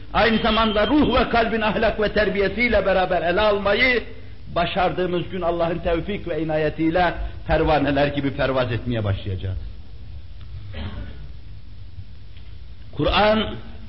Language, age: Turkish, 50-69